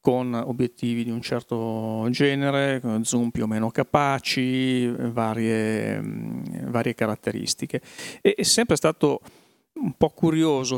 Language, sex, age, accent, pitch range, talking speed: Italian, male, 40-59, native, 115-140 Hz, 110 wpm